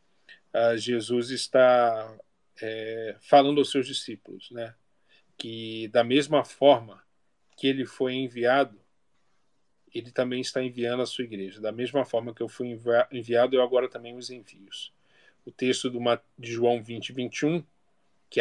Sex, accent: male, Brazilian